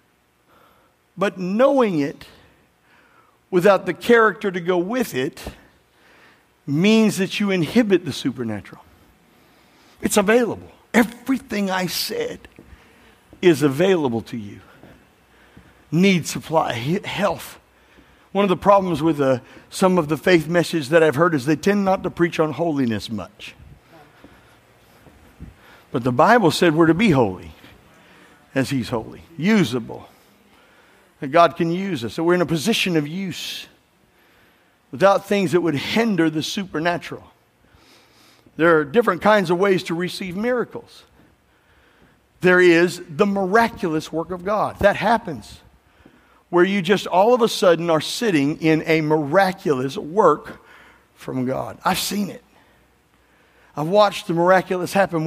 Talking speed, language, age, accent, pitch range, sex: 135 wpm, English, 60-79, American, 150-200 Hz, male